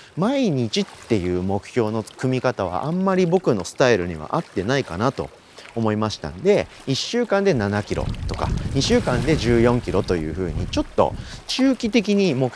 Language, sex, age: Japanese, male, 30-49